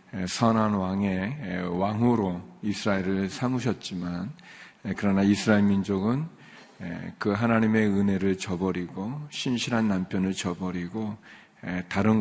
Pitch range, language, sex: 95-110 Hz, Korean, male